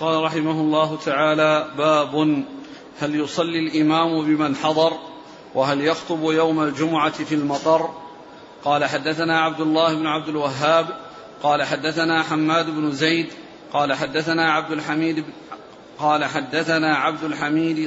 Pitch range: 155-165 Hz